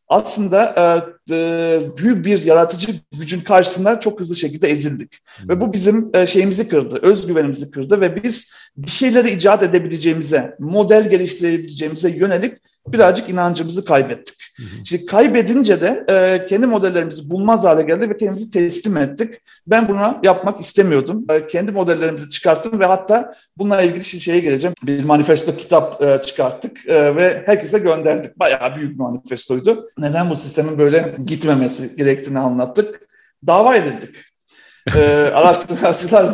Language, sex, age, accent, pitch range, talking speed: Turkish, male, 40-59, native, 155-200 Hz, 120 wpm